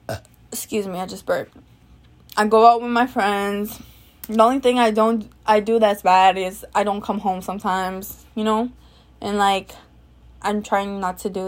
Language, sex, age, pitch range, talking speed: English, female, 20-39, 190-250 Hz, 185 wpm